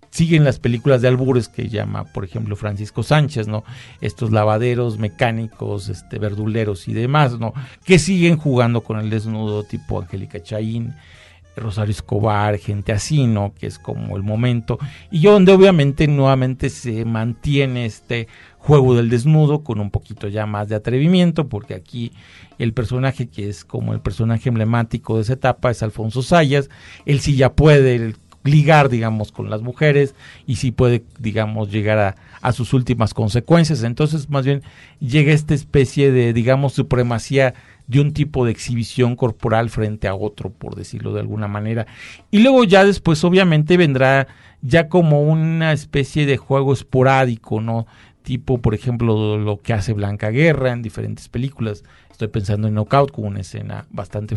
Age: 40-59